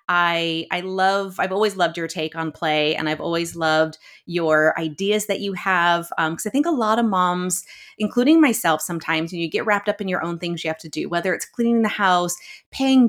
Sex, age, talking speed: female, 30-49, 225 wpm